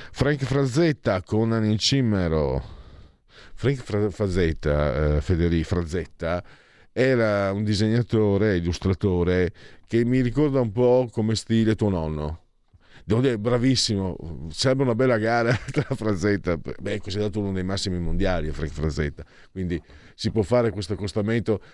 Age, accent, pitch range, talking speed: 50-69, native, 100-130 Hz, 130 wpm